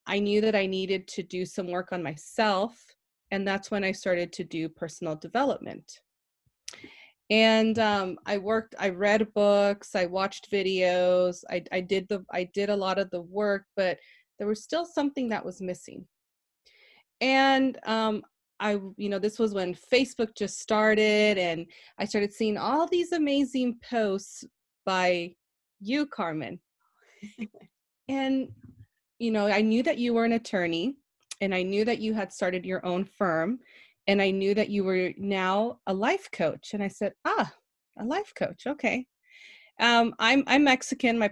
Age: 20-39